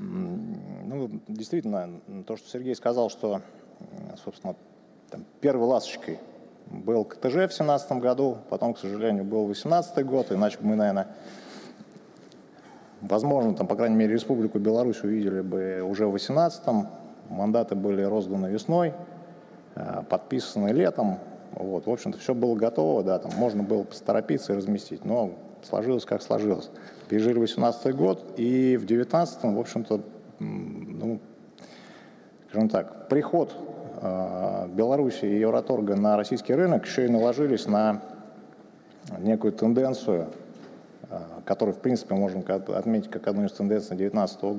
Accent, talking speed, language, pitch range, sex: native, 125 wpm, Russian, 100-135 Hz, male